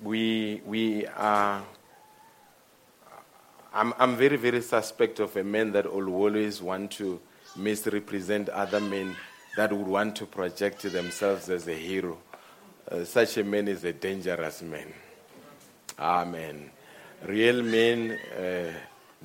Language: English